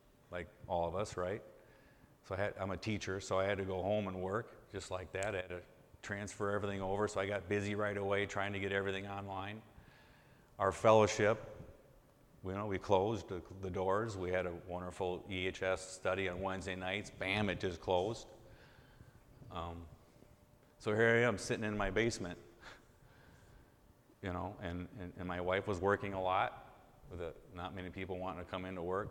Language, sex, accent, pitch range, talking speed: English, male, American, 90-105 Hz, 175 wpm